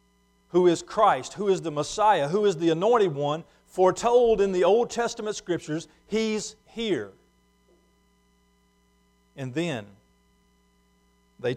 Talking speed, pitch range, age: 120 wpm, 150-200 Hz, 50-69